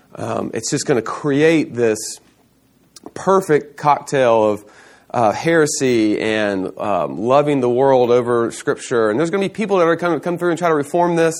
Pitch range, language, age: 110-155 Hz, English, 30-49